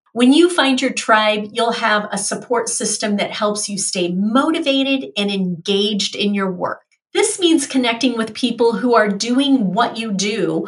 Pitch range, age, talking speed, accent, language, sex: 200-270 Hz, 40-59, 175 wpm, American, English, female